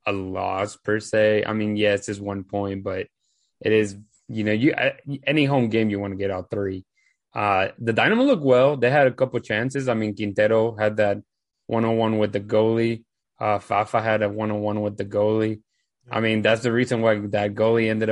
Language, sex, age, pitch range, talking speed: English, male, 20-39, 105-120 Hz, 210 wpm